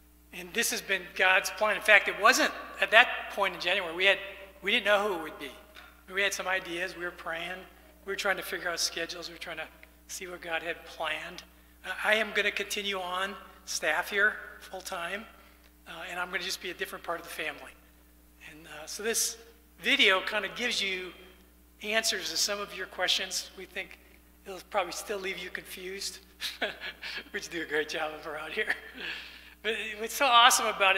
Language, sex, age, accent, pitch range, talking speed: English, male, 40-59, American, 160-210 Hz, 210 wpm